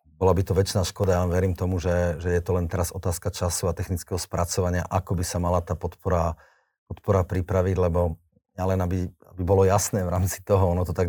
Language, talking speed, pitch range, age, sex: Slovak, 210 wpm, 90-95 Hz, 40-59, male